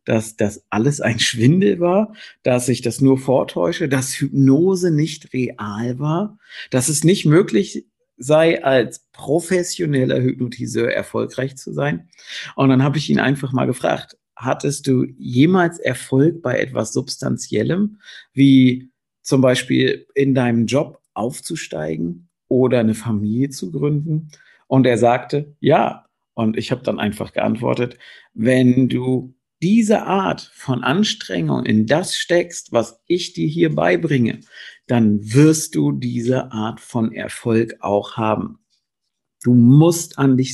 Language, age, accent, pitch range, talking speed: German, 50-69, German, 125-165 Hz, 135 wpm